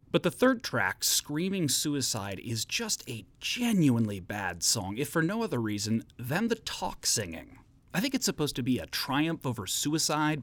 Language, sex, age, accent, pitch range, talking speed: English, male, 30-49, American, 115-155 Hz, 180 wpm